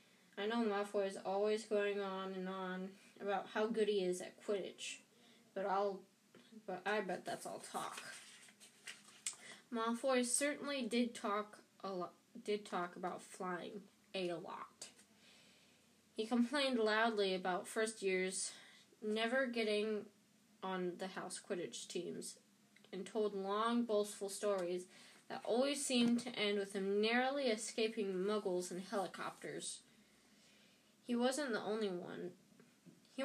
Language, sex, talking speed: English, female, 130 wpm